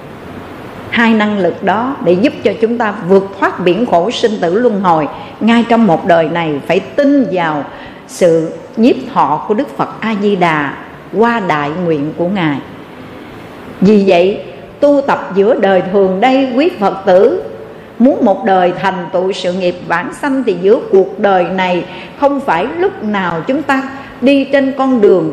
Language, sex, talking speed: Vietnamese, female, 170 wpm